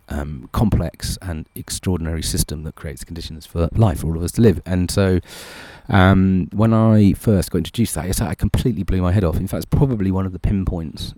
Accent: British